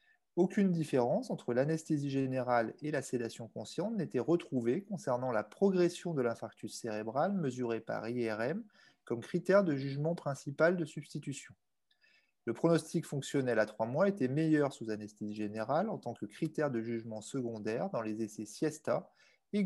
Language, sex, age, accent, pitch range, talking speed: French, male, 30-49, French, 120-175 Hz, 155 wpm